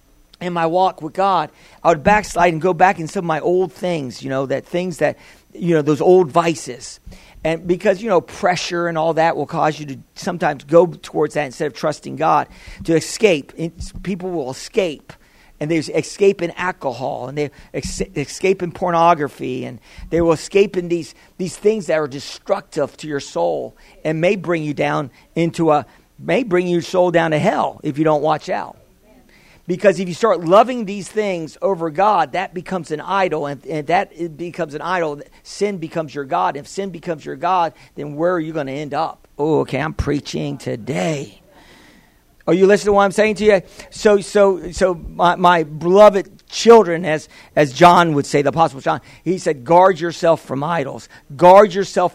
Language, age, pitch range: English, 50-69, 155-185 Hz